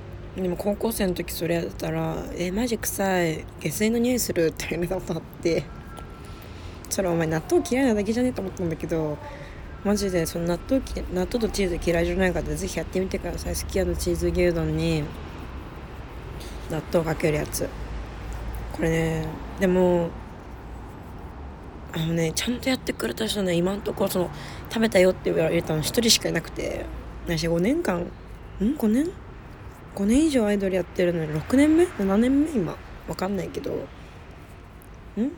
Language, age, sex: Japanese, 20-39, female